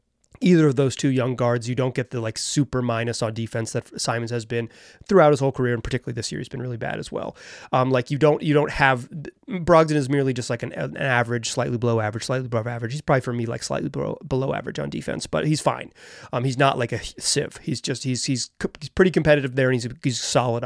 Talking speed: 250 wpm